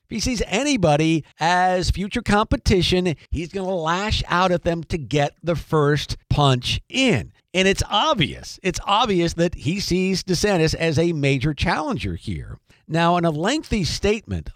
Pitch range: 145-190 Hz